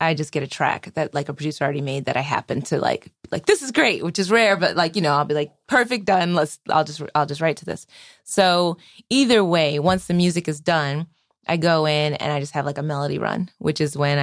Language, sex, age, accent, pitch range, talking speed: English, female, 20-39, American, 145-175 Hz, 260 wpm